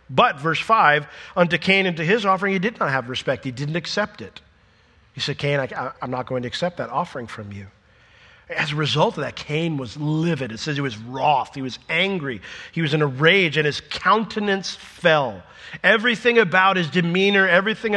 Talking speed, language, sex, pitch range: 200 wpm, English, male, 150-210 Hz